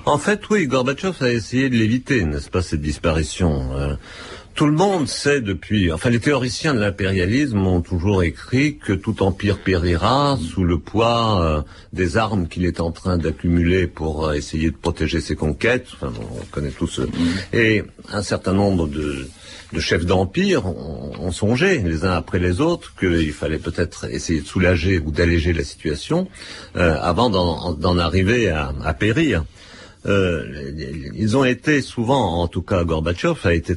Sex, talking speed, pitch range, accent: male, 175 wpm, 85-115 Hz, French